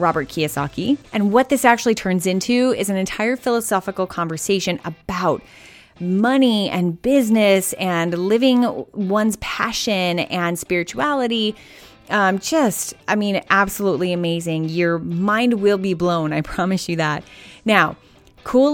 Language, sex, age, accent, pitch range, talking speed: English, female, 20-39, American, 170-215 Hz, 130 wpm